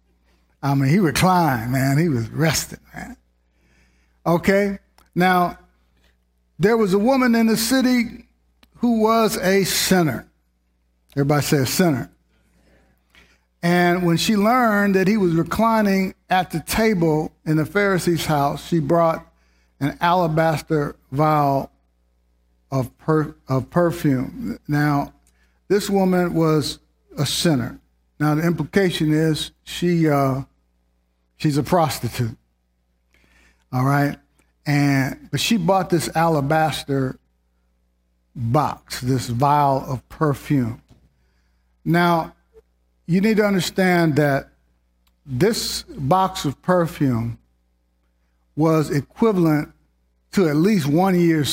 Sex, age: male, 60-79